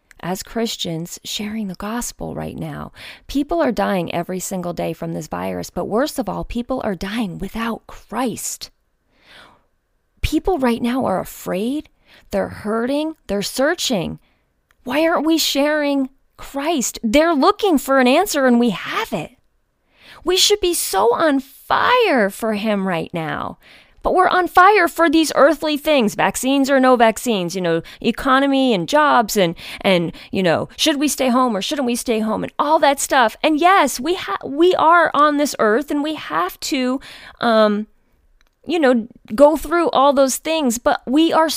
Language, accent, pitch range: English, American, 215-305 Hz